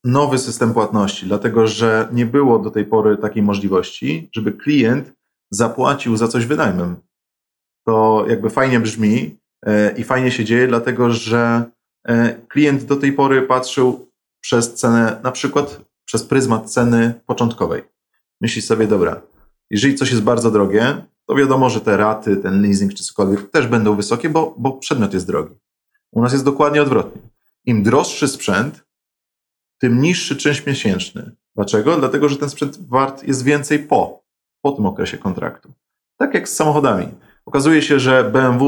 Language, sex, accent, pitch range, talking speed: Polish, male, native, 110-140 Hz, 155 wpm